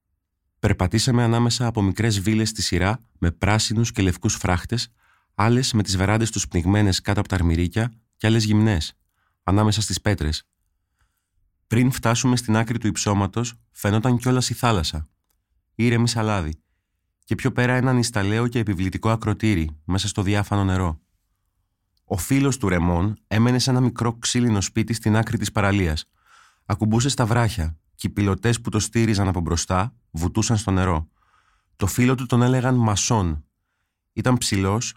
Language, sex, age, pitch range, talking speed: Greek, male, 30-49, 90-115 Hz, 150 wpm